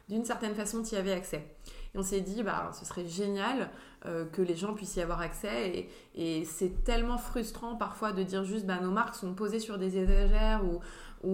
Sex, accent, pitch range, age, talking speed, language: female, French, 180-215 Hz, 20-39, 230 wpm, English